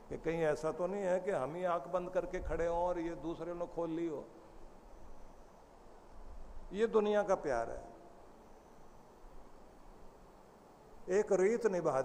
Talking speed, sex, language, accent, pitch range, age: 145 wpm, male, Hindi, native, 145-195 Hz, 50-69